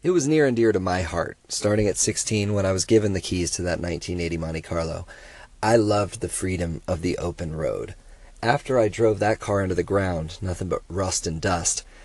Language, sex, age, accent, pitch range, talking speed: English, male, 40-59, American, 90-115 Hz, 215 wpm